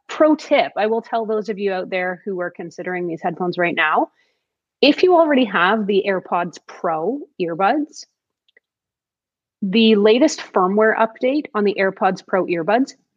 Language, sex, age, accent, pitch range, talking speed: English, female, 30-49, American, 180-220 Hz, 155 wpm